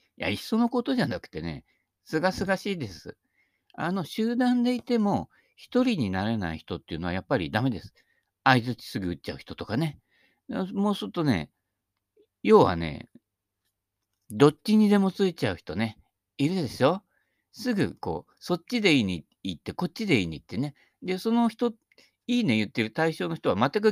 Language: Japanese